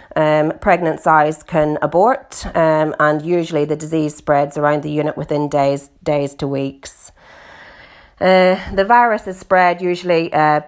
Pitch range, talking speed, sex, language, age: 150-175 Hz, 145 wpm, female, English, 30-49